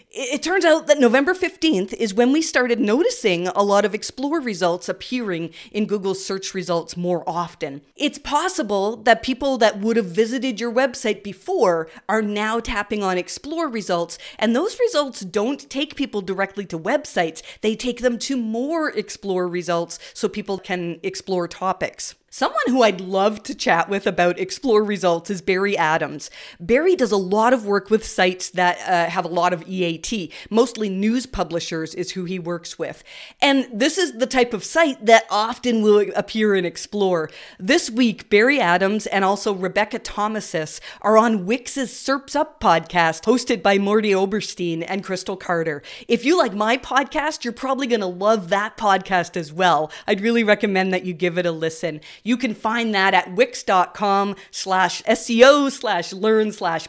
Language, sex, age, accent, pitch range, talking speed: English, female, 40-59, American, 180-245 Hz, 175 wpm